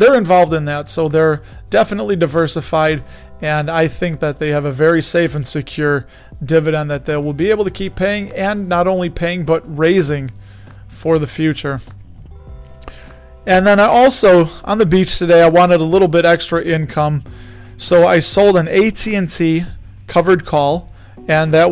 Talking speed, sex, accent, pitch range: 170 wpm, male, American, 140-175 Hz